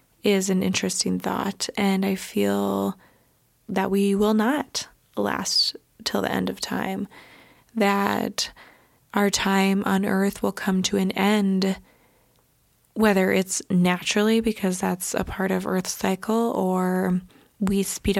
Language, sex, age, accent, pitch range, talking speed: English, female, 20-39, American, 190-210 Hz, 130 wpm